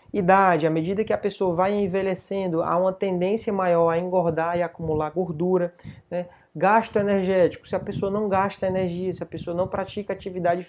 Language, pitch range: Portuguese, 180-215 Hz